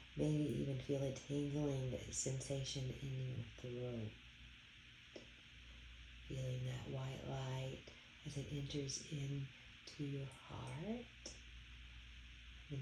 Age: 40-59